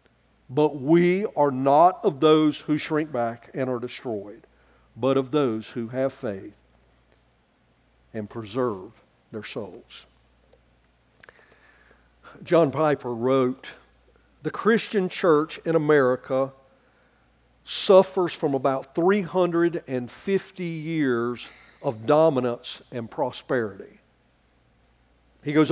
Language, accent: English, American